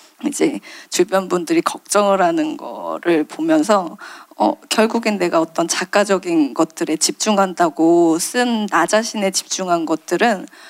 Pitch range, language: 180-230 Hz, Korean